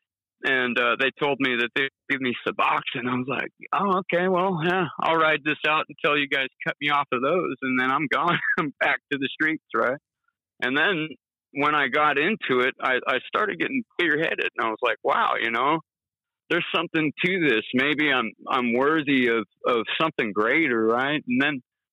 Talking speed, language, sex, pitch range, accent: 200 wpm, English, male, 120-155 Hz, American